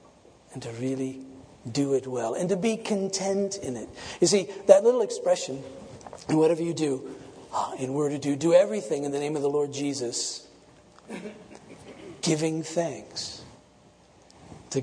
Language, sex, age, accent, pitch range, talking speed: English, male, 50-69, American, 140-205 Hz, 145 wpm